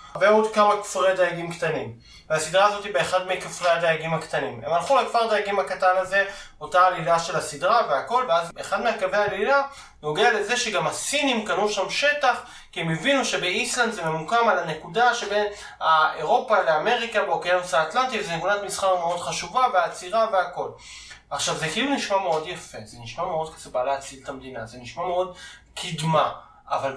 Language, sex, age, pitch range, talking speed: Hebrew, male, 20-39, 160-215 Hz, 160 wpm